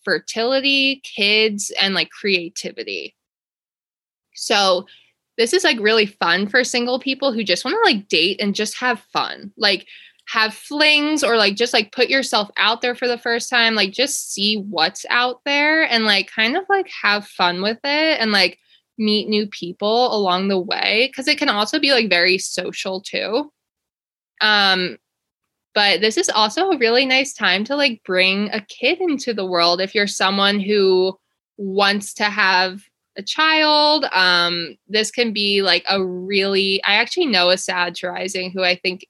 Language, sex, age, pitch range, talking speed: English, female, 20-39, 185-245 Hz, 175 wpm